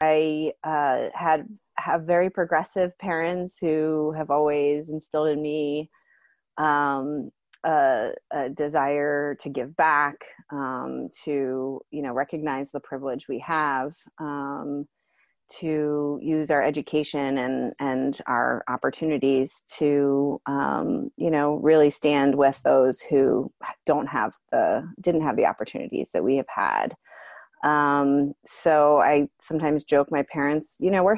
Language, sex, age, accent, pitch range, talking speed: English, female, 30-49, American, 145-165 Hz, 130 wpm